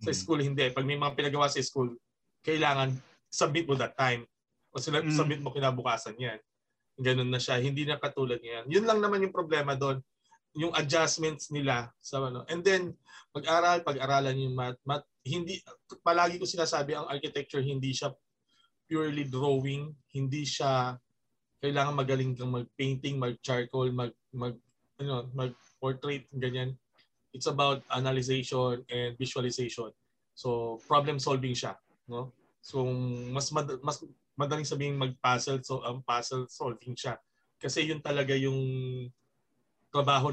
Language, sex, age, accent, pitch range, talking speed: Filipino, male, 20-39, native, 125-150 Hz, 130 wpm